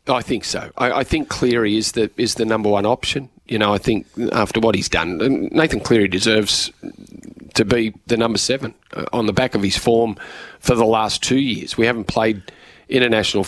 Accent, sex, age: Australian, male, 40-59